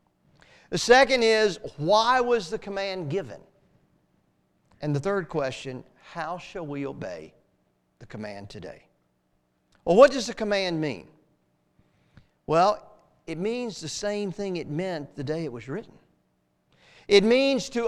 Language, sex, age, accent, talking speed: English, male, 50-69, American, 140 wpm